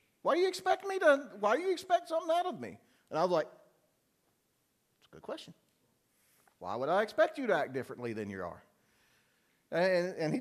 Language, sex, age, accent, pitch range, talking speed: English, male, 50-69, American, 190-260 Hz, 210 wpm